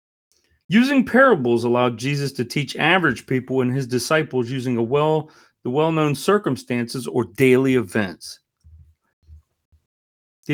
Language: English